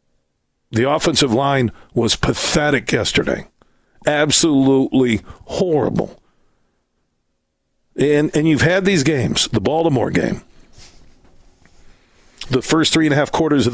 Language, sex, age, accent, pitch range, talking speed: English, male, 50-69, American, 115-150 Hz, 110 wpm